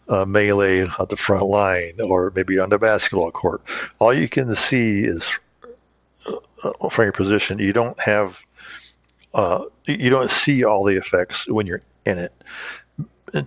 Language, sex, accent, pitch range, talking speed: English, male, American, 90-110 Hz, 160 wpm